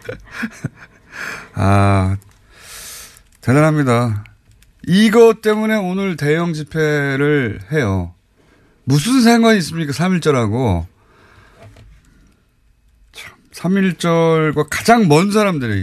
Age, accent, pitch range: 30-49, native, 100-160 Hz